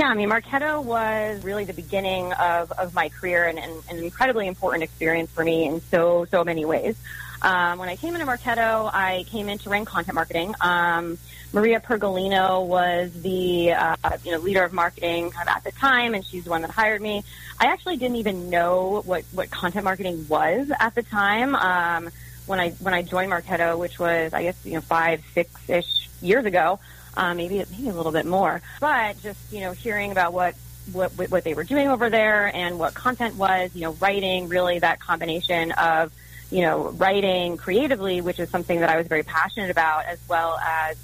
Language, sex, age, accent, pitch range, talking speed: English, female, 30-49, American, 170-200 Hz, 205 wpm